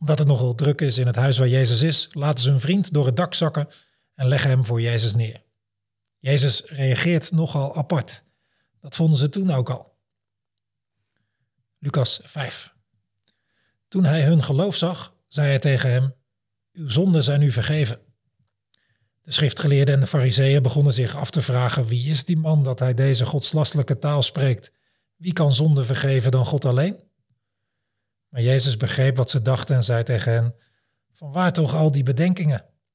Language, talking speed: Dutch, 170 wpm